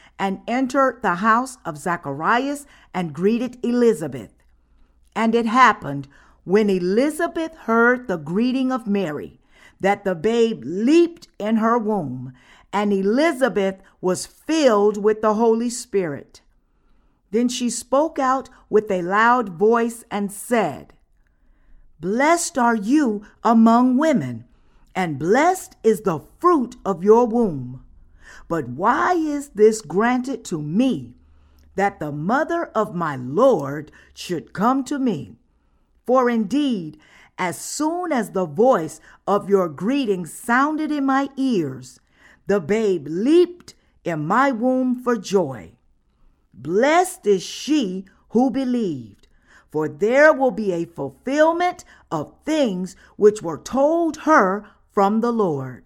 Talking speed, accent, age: 125 wpm, American, 50-69